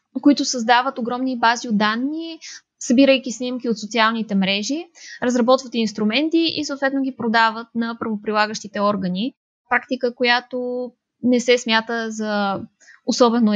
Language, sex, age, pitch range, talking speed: Bulgarian, female, 20-39, 210-255 Hz, 120 wpm